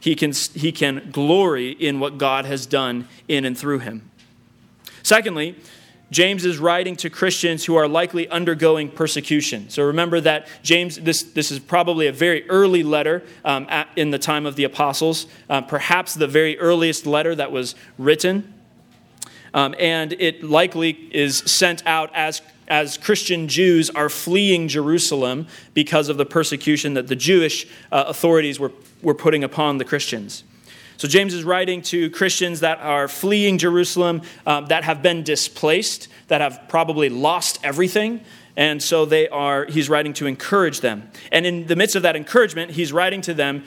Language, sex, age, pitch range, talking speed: English, male, 30-49, 145-175 Hz, 170 wpm